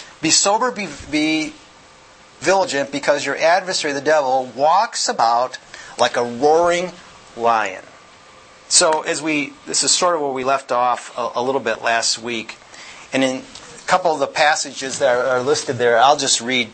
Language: English